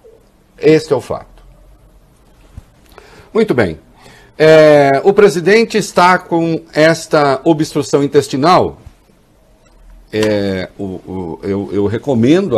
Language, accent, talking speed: English, Brazilian, 75 wpm